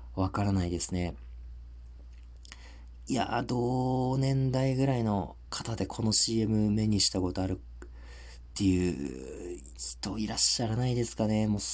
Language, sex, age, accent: Japanese, male, 40-59, native